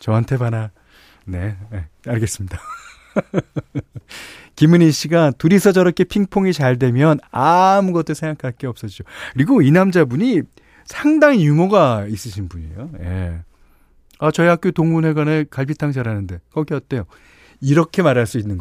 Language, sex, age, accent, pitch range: Korean, male, 40-59, native, 100-155 Hz